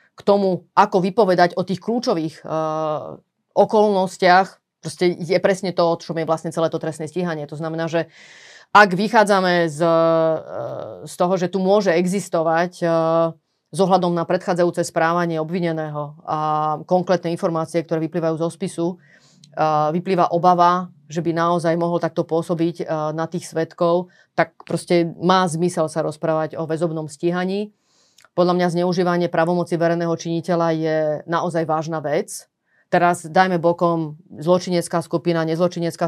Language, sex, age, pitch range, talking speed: Slovak, female, 30-49, 160-180 Hz, 140 wpm